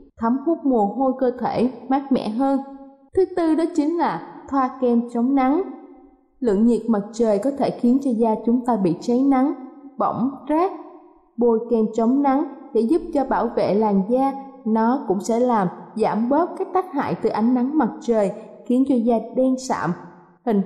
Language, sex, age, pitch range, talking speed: Vietnamese, female, 20-39, 225-280 Hz, 190 wpm